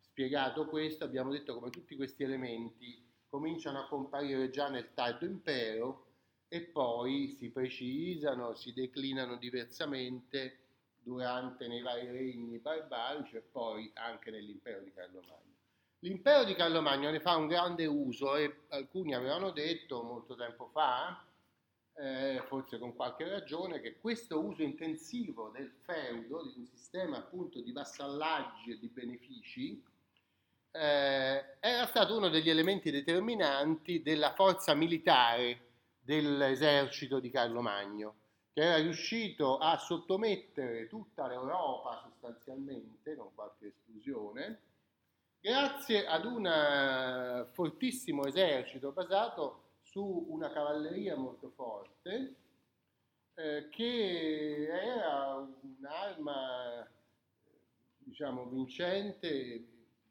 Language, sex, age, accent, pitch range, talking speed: Italian, male, 30-49, native, 125-170 Hz, 110 wpm